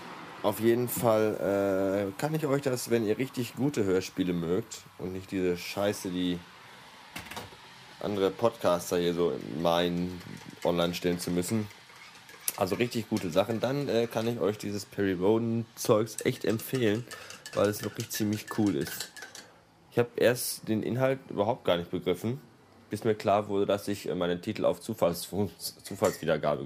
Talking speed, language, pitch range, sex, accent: 155 wpm, German, 90-115 Hz, male, German